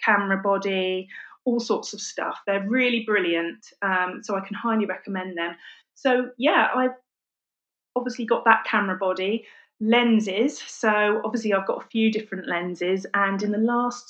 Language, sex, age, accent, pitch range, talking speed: English, female, 30-49, British, 185-225 Hz, 160 wpm